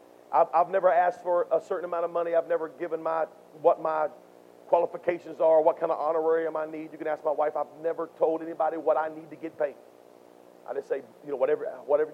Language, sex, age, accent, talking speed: English, male, 40-59, American, 225 wpm